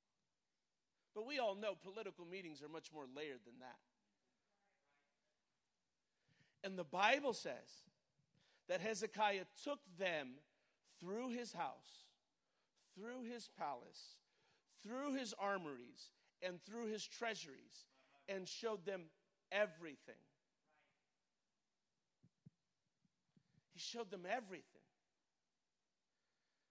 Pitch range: 190-260 Hz